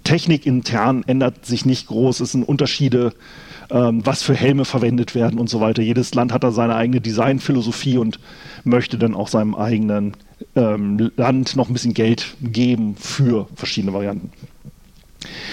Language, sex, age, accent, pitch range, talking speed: German, male, 40-59, German, 110-170 Hz, 150 wpm